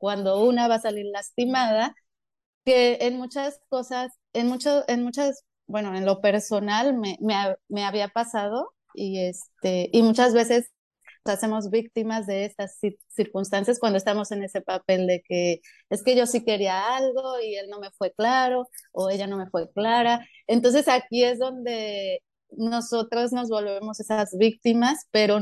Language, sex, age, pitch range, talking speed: Spanish, female, 30-49, 200-240 Hz, 165 wpm